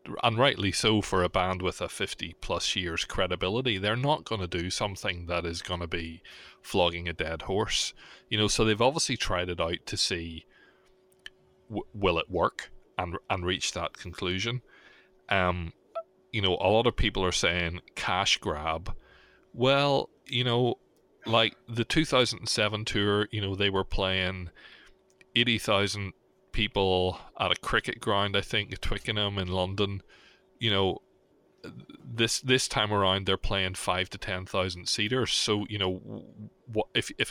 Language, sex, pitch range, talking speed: English, male, 90-110 Hz, 165 wpm